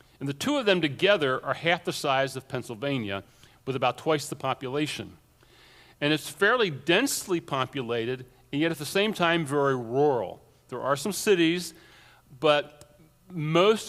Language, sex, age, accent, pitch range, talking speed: English, male, 40-59, American, 130-160 Hz, 155 wpm